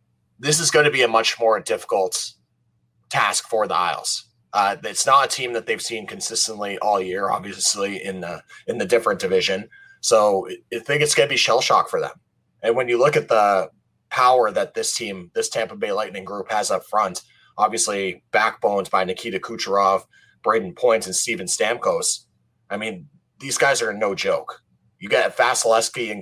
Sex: male